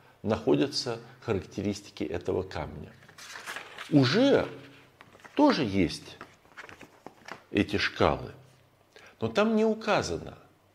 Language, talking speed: Russian, 75 wpm